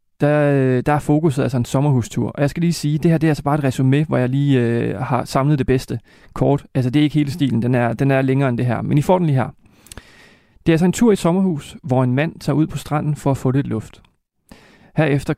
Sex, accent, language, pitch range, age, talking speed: male, native, Danish, 125-160 Hz, 30-49, 280 wpm